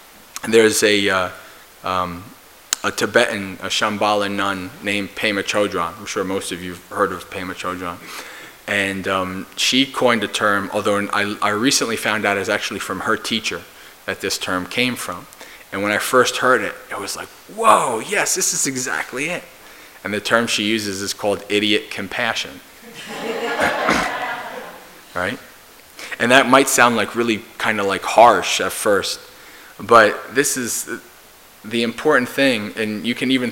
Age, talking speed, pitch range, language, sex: 20-39, 165 wpm, 100-115 Hz, English, male